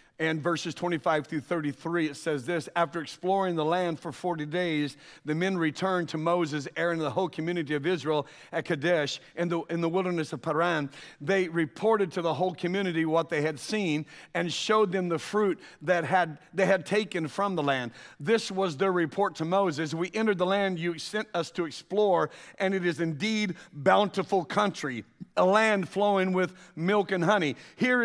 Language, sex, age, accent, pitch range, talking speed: English, male, 50-69, American, 170-220 Hz, 190 wpm